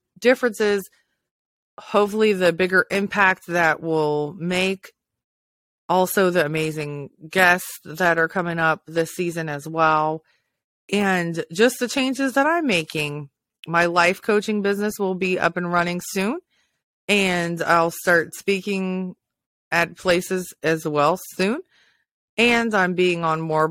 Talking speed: 130 wpm